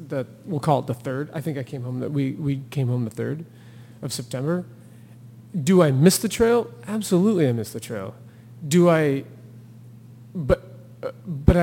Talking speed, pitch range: 175 wpm, 120-145 Hz